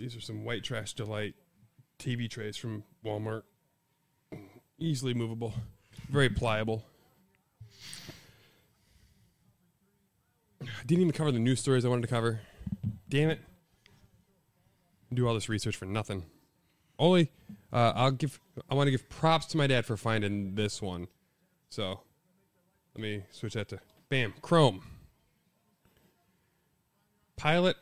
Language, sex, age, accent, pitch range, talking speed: English, male, 20-39, American, 110-140 Hz, 130 wpm